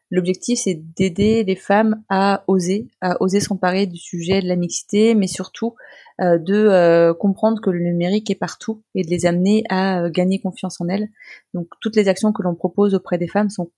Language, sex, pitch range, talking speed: French, female, 175-205 Hz, 205 wpm